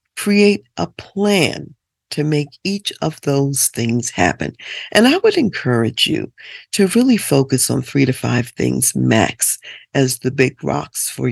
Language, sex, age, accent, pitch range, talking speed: English, female, 50-69, American, 120-170 Hz, 155 wpm